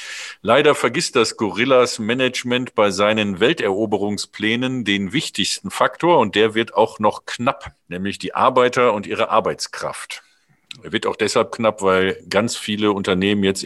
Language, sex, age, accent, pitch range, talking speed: German, male, 50-69, German, 100-130 Hz, 145 wpm